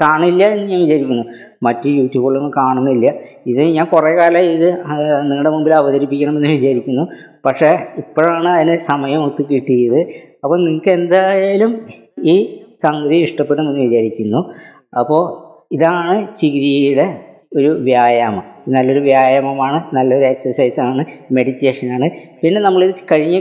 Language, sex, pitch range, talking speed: Malayalam, female, 125-155 Hz, 110 wpm